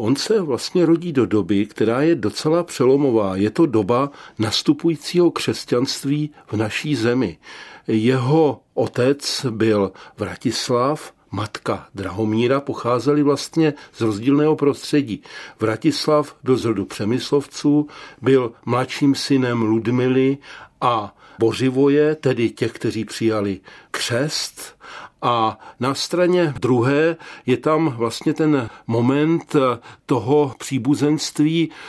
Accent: native